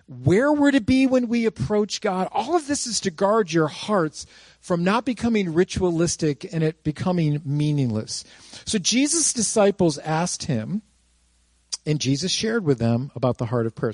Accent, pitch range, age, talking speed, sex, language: American, 125-185 Hz, 50-69, 170 wpm, male, English